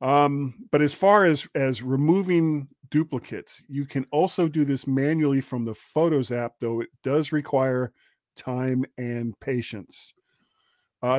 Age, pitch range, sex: 40-59, 130-175 Hz, male